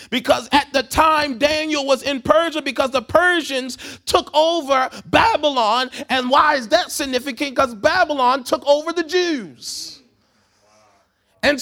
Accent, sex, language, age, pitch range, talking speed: American, male, English, 30-49, 260-330 Hz, 135 wpm